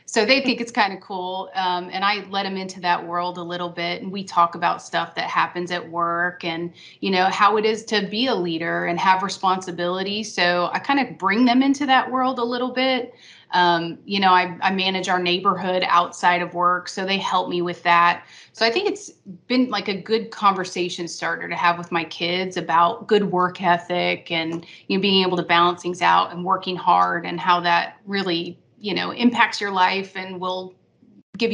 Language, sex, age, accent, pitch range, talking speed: English, female, 30-49, American, 175-195 Hz, 215 wpm